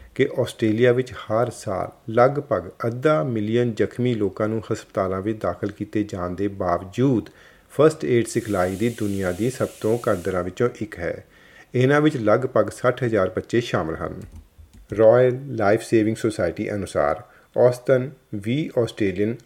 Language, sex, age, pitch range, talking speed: Punjabi, male, 40-59, 100-125 Hz, 135 wpm